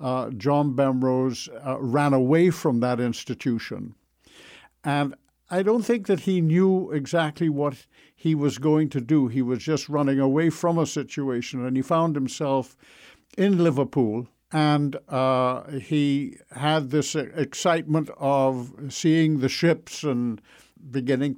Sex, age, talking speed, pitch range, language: male, 60-79, 140 wpm, 130-155 Hz, English